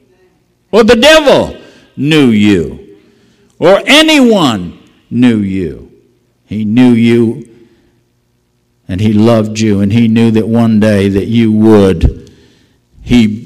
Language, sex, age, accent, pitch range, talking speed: English, male, 60-79, American, 80-110 Hz, 115 wpm